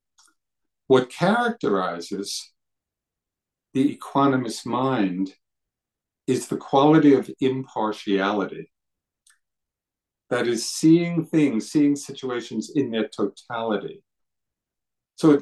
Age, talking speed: 50-69, 80 wpm